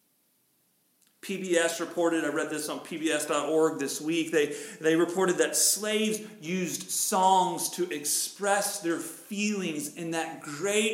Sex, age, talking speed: male, 40-59, 125 wpm